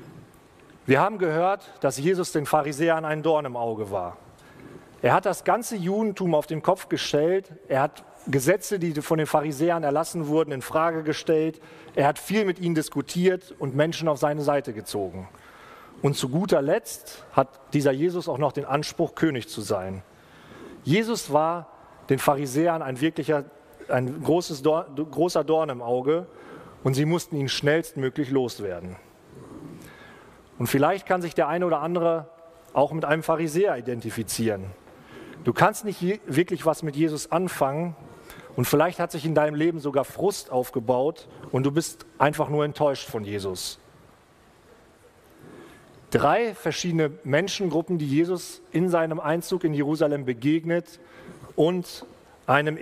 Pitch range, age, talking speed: 140-170 Hz, 40-59, 150 wpm